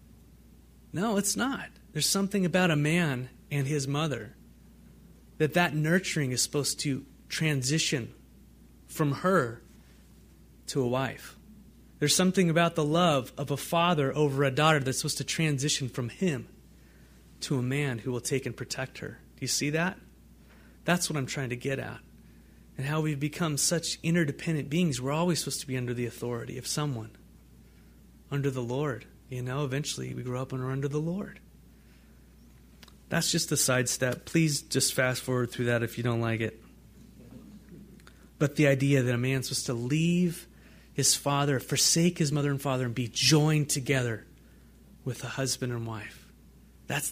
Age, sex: 30-49, male